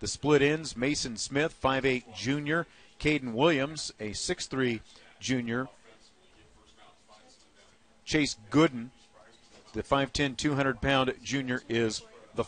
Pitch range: 110-145 Hz